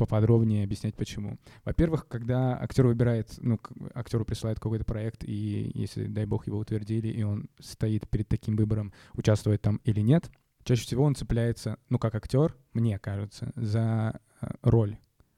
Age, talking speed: 20-39, 150 wpm